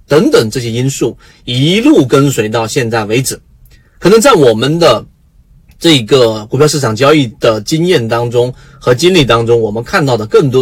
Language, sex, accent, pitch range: Chinese, male, native, 125-195 Hz